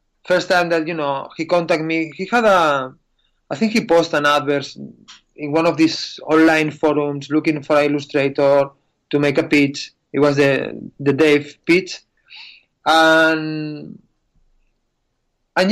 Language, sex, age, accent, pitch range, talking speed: English, male, 30-49, Spanish, 145-180 Hz, 150 wpm